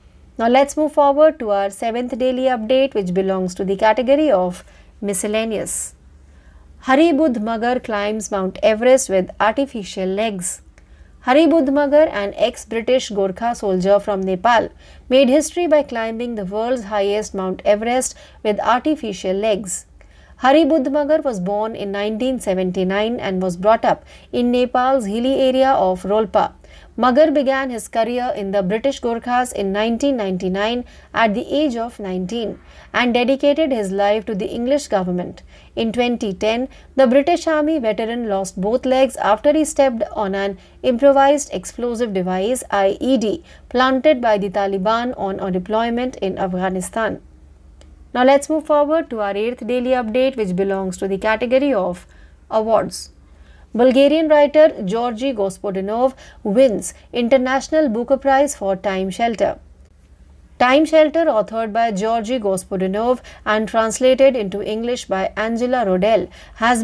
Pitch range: 195-265 Hz